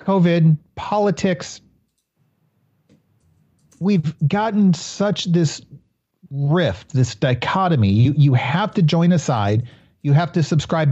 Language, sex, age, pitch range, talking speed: English, male, 40-59, 130-175 Hz, 110 wpm